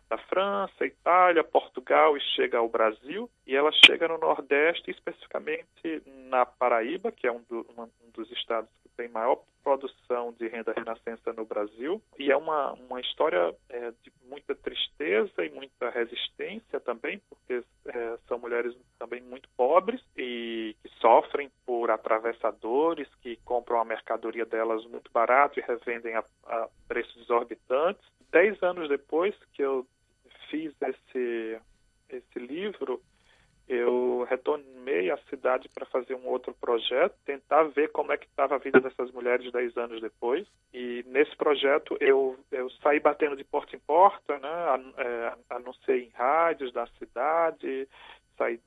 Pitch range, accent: 120-180 Hz, Brazilian